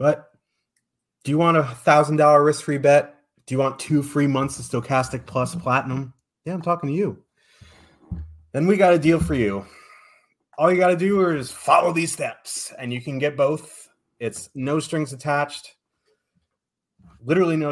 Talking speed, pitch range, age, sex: 170 wpm, 110-145 Hz, 30-49, male